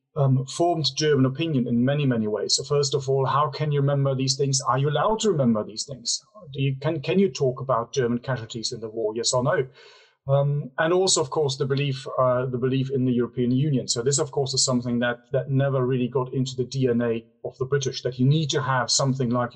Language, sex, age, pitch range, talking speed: English, male, 30-49, 125-140 Hz, 240 wpm